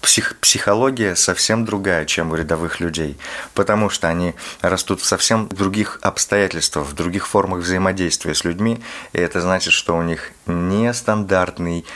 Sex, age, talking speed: male, 30-49, 145 wpm